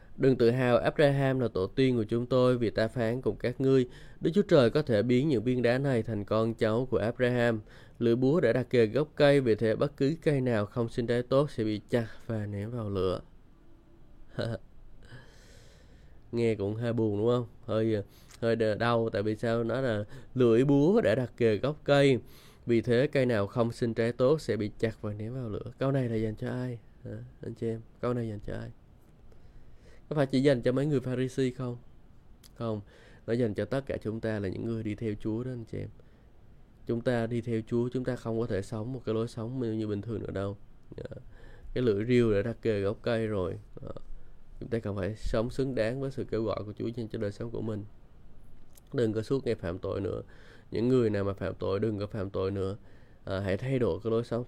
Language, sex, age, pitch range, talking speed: Vietnamese, male, 20-39, 110-125 Hz, 230 wpm